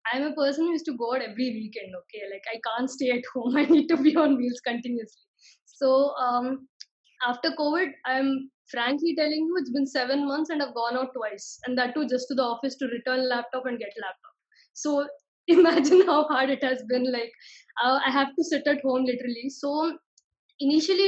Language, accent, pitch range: Telugu, native, 245-300 Hz